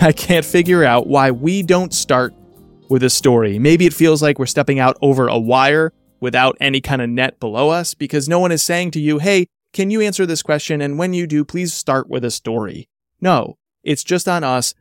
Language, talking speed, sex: English, 225 wpm, male